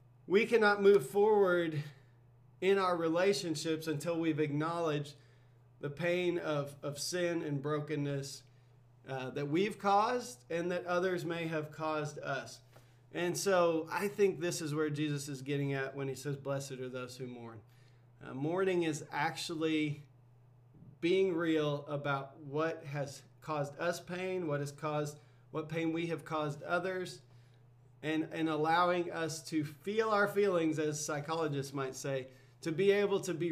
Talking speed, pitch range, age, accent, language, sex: 150 wpm, 135-175 Hz, 40-59, American, English, male